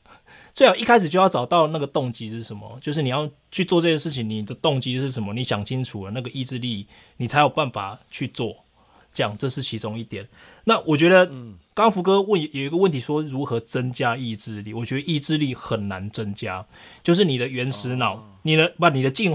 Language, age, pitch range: Chinese, 20-39, 115-160 Hz